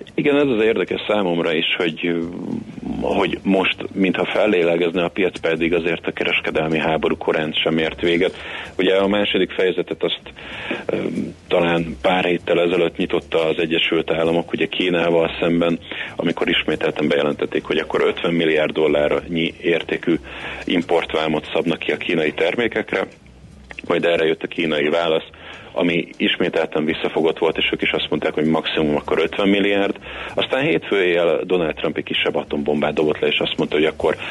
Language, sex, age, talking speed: Hungarian, male, 30-49, 150 wpm